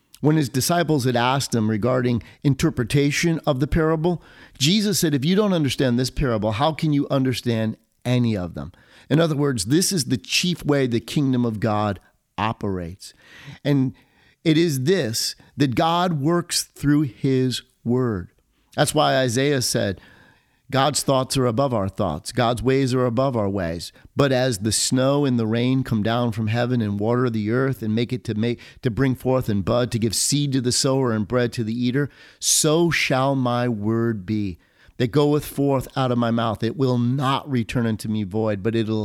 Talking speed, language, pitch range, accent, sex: 185 wpm, English, 115-145 Hz, American, male